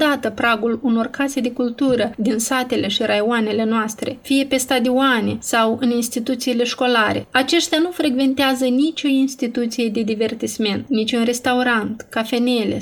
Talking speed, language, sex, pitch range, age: 140 wpm, Romanian, female, 225-260 Hz, 30-49